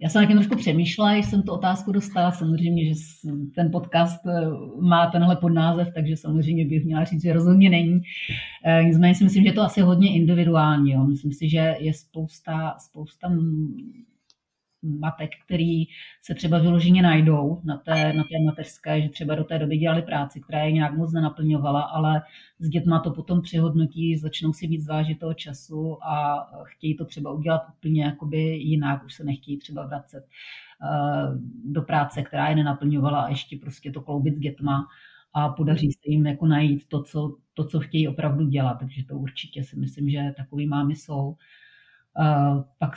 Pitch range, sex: 150-165 Hz, female